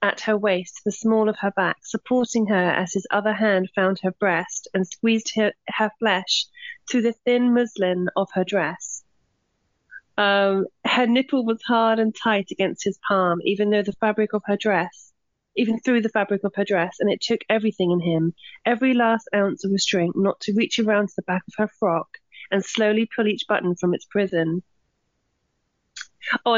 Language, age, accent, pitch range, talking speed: English, 30-49, British, 195-235 Hz, 185 wpm